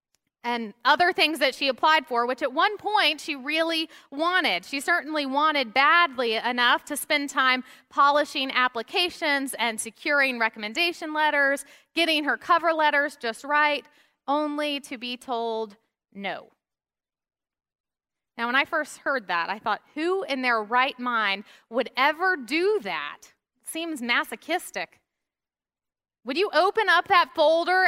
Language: English